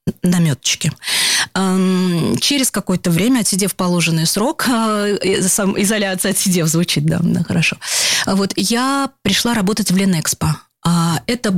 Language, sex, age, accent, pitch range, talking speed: Russian, female, 20-39, native, 170-205 Hz, 105 wpm